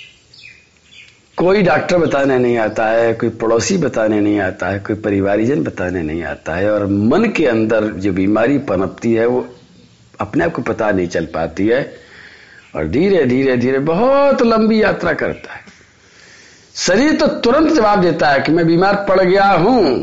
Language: Hindi